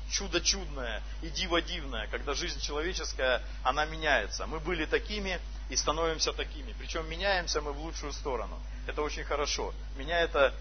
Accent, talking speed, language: native, 140 wpm, Russian